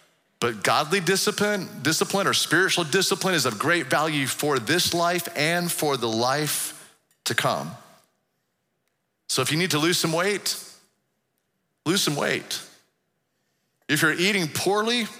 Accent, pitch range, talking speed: American, 145-200 Hz, 140 wpm